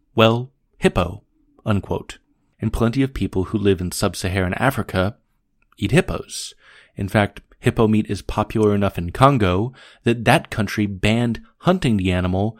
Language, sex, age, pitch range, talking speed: English, male, 30-49, 100-125 Hz, 145 wpm